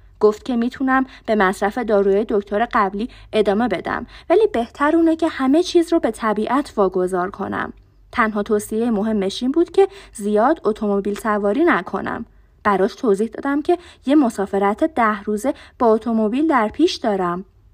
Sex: female